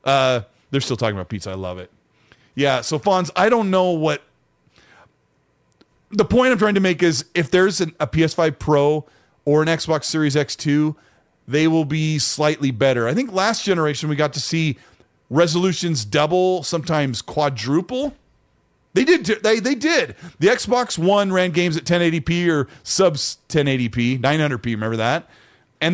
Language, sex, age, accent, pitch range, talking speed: English, male, 30-49, American, 120-175 Hz, 160 wpm